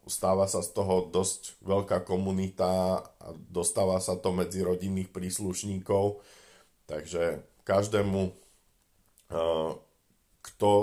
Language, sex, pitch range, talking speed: Slovak, male, 85-95 Hz, 95 wpm